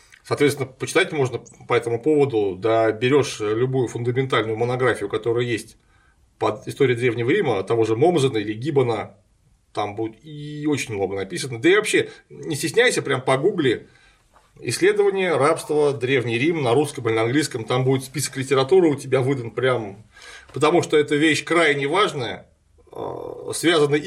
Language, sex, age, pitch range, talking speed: Russian, male, 30-49, 120-160 Hz, 145 wpm